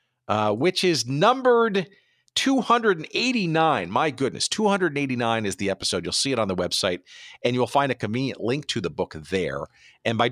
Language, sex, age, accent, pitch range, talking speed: English, male, 50-69, American, 100-135 Hz, 170 wpm